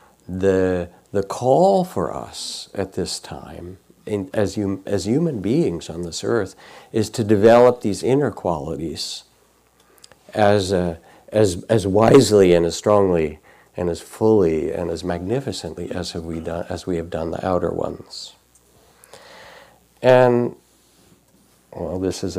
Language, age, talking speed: English, 60-79, 140 wpm